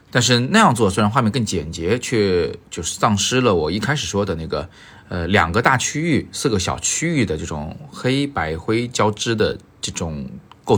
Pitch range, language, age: 90-115 Hz, Chinese, 30-49